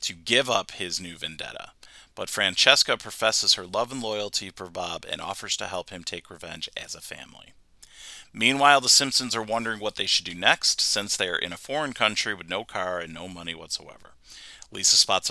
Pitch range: 90-115 Hz